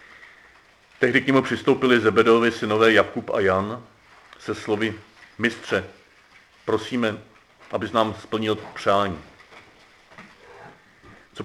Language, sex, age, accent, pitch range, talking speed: Czech, male, 40-59, native, 105-125 Hz, 95 wpm